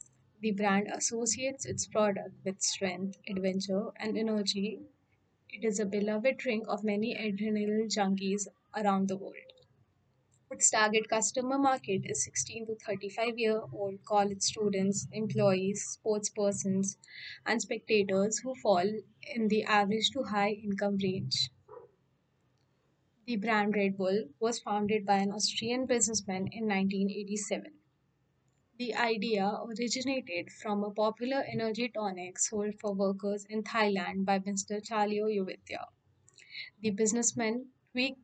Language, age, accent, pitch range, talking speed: English, 20-39, Indian, 195-225 Hz, 120 wpm